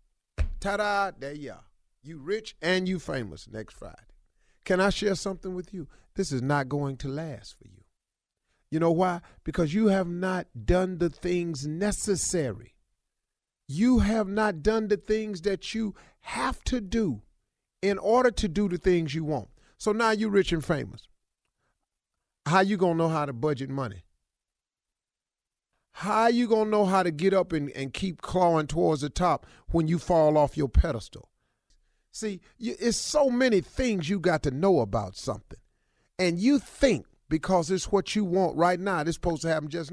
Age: 40-59